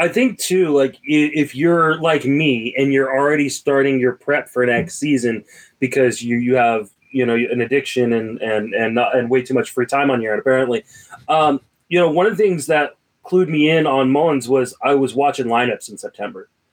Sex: male